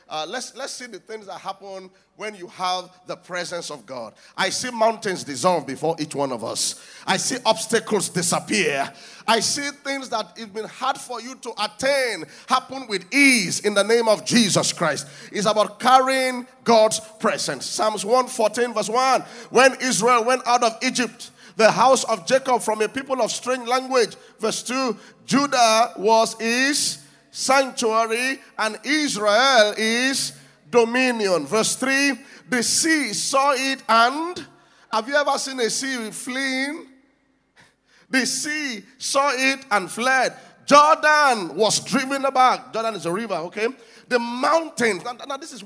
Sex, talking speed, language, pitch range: male, 160 wpm, English, 215-265 Hz